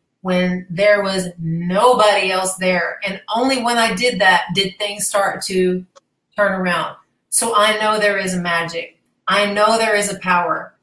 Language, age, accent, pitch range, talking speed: English, 30-49, American, 185-215 Hz, 170 wpm